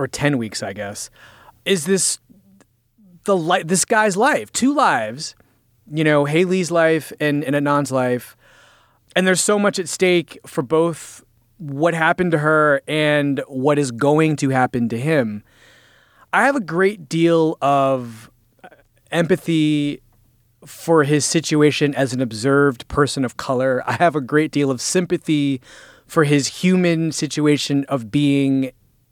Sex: male